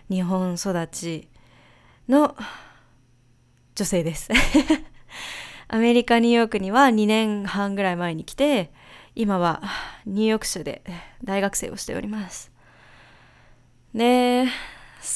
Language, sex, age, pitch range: Japanese, female, 20-39, 160-215 Hz